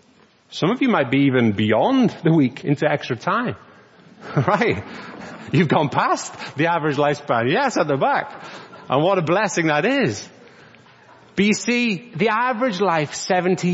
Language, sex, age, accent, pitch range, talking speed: English, male, 30-49, British, 165-220 Hz, 155 wpm